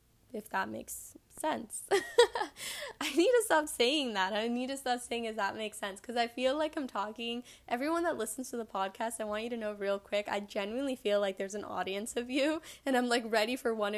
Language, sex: English, female